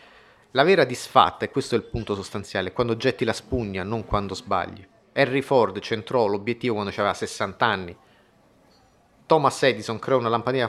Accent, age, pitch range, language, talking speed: native, 30-49, 100-120 Hz, Italian, 170 wpm